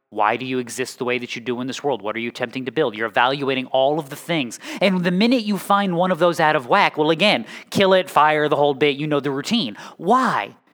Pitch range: 130-200 Hz